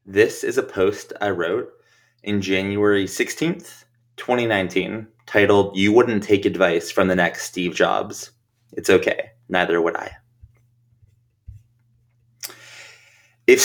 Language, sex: English, male